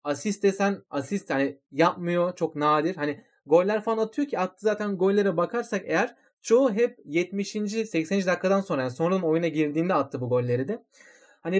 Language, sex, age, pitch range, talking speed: Turkish, male, 30-49, 145-195 Hz, 165 wpm